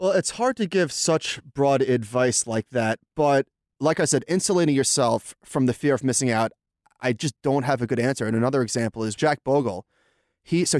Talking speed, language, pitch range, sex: 205 wpm, English, 115-140 Hz, male